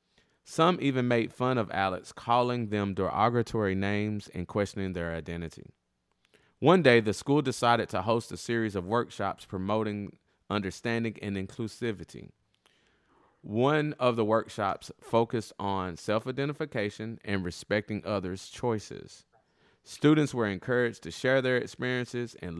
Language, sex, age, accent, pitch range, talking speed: English, male, 30-49, American, 95-120 Hz, 125 wpm